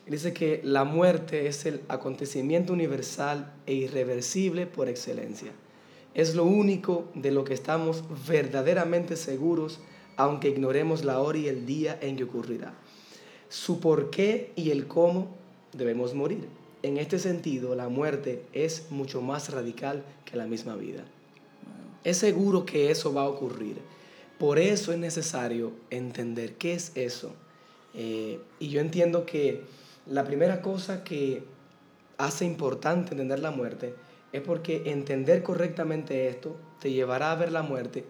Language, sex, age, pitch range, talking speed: Spanish, male, 30-49, 130-165 Hz, 145 wpm